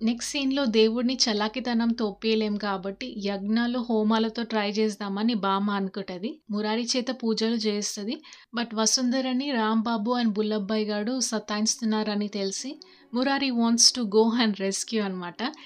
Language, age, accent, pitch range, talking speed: Telugu, 30-49, native, 210-240 Hz, 120 wpm